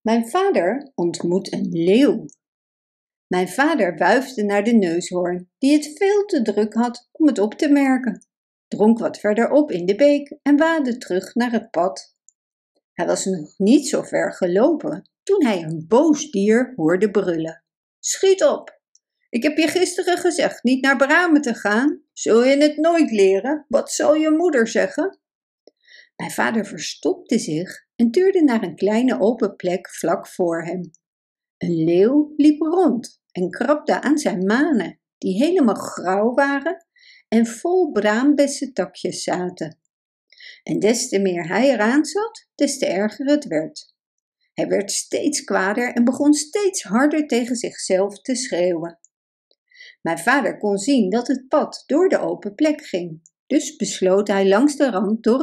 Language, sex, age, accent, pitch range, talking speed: Dutch, female, 60-79, Dutch, 195-300 Hz, 155 wpm